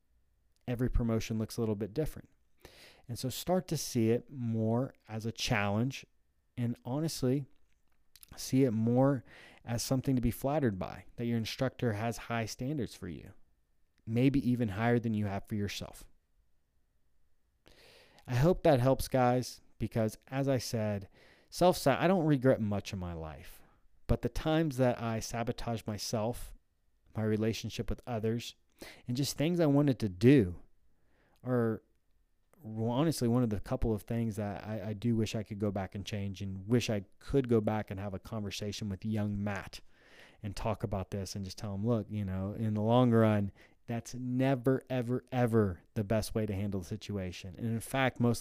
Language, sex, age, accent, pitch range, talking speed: English, male, 30-49, American, 100-125 Hz, 175 wpm